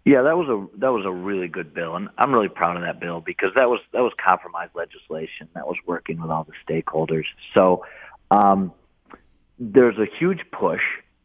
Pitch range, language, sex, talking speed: 90-105 Hz, English, male, 195 wpm